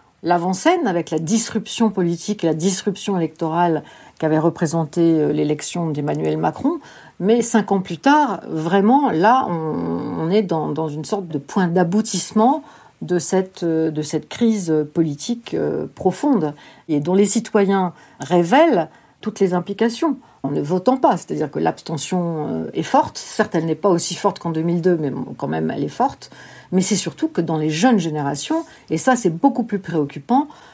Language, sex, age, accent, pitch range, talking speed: French, female, 50-69, French, 160-215 Hz, 160 wpm